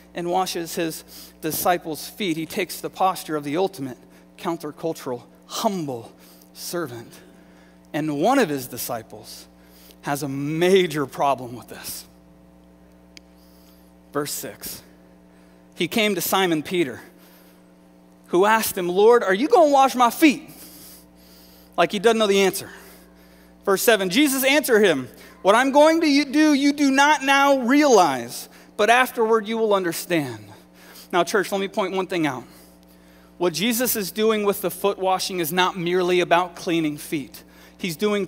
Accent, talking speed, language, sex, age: American, 150 wpm, English, male, 30-49